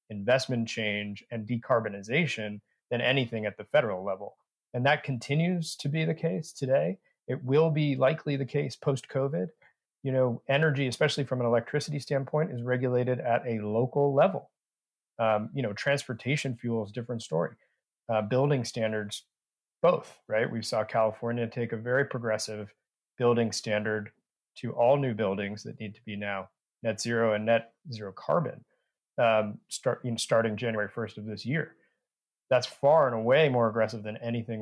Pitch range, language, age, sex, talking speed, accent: 110-140 Hz, English, 30-49, male, 160 wpm, American